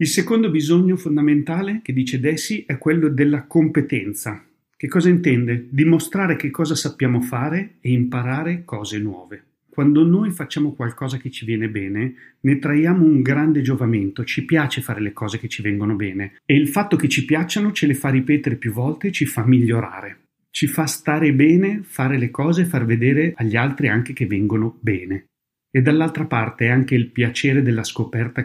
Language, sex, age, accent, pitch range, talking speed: Italian, male, 30-49, native, 120-155 Hz, 180 wpm